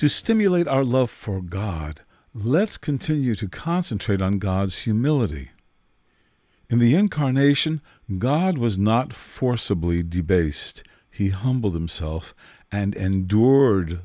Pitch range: 90-135 Hz